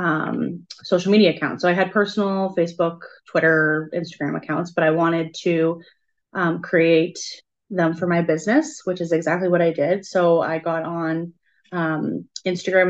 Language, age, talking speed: English, 20-39, 160 wpm